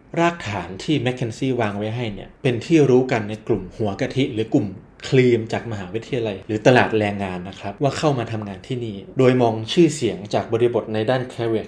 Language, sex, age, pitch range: Thai, male, 20-39, 110-140 Hz